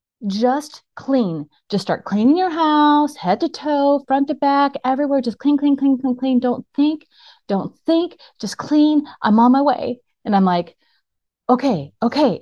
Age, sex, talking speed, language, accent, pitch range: 30-49, female, 170 wpm, English, American, 165-245 Hz